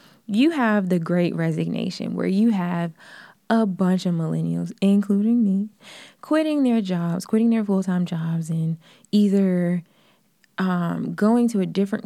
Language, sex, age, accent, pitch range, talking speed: English, female, 20-39, American, 190-250 Hz, 140 wpm